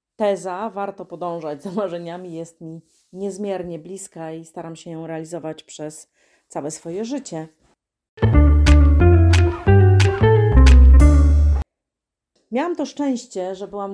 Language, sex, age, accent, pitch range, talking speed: Polish, female, 30-49, native, 160-195 Hz, 100 wpm